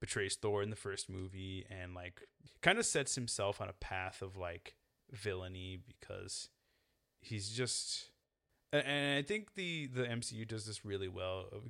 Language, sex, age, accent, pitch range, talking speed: English, male, 20-39, American, 95-120 Hz, 170 wpm